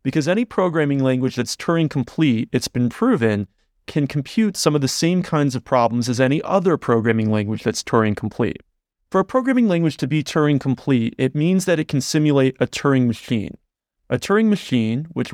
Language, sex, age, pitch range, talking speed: English, male, 30-49, 125-160 Hz, 175 wpm